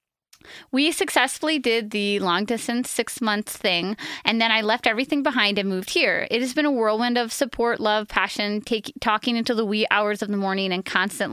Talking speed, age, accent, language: 185 wpm, 30-49, American, English